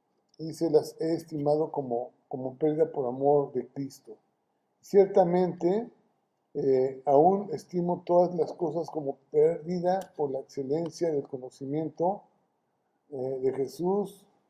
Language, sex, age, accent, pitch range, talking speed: Spanish, male, 50-69, Mexican, 140-175 Hz, 120 wpm